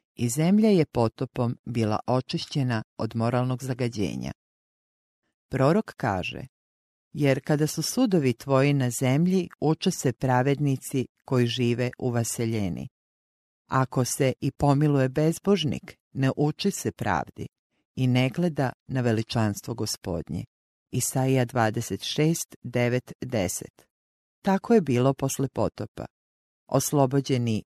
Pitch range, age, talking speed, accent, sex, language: 115-145 Hz, 40-59, 105 wpm, Croatian, female, English